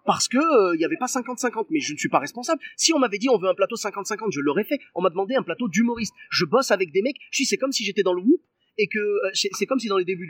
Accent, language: French, French